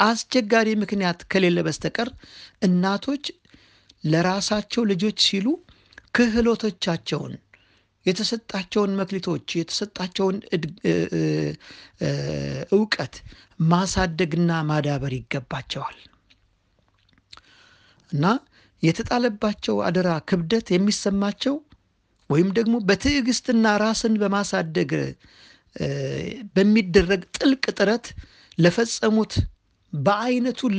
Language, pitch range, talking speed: Amharic, 150-215 Hz, 60 wpm